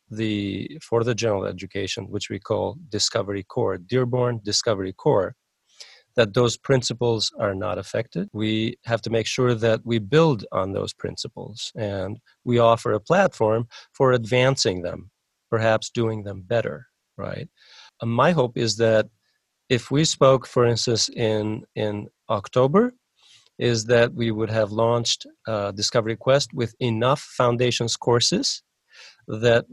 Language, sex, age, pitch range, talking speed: English, male, 40-59, 110-125 Hz, 140 wpm